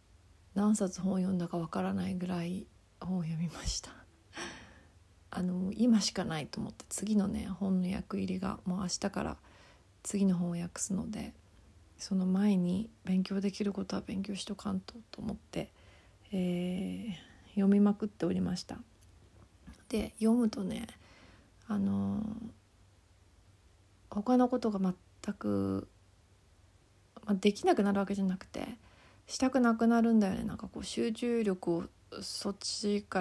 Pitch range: 175-215 Hz